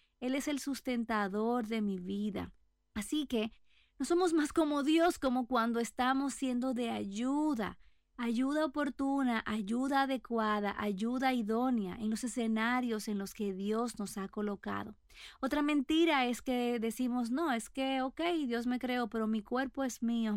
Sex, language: female, Spanish